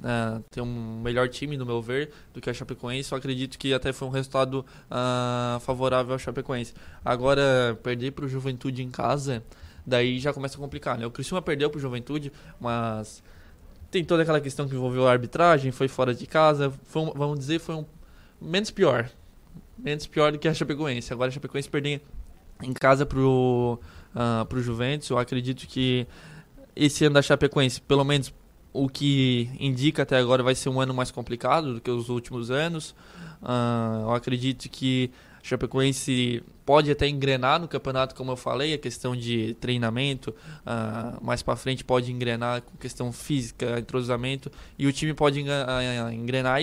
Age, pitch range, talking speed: 20-39, 125-145 Hz, 180 wpm